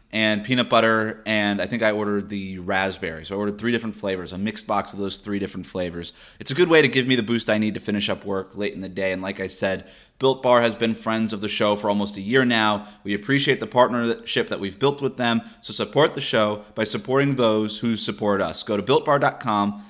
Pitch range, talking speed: 105-130 Hz, 245 wpm